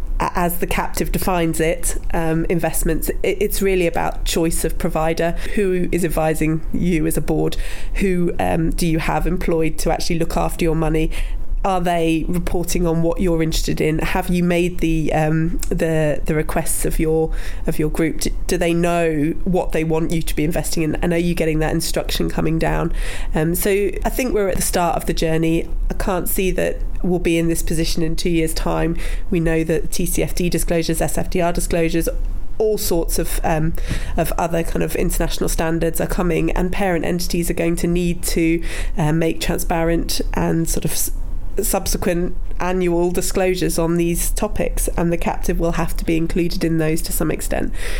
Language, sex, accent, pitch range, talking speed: English, female, British, 160-175 Hz, 185 wpm